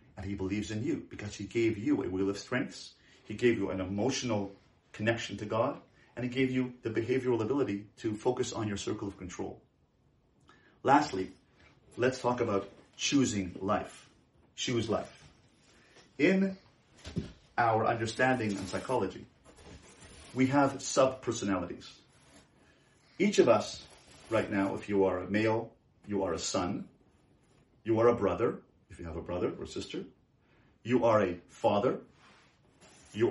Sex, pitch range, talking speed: male, 100-125 Hz, 145 wpm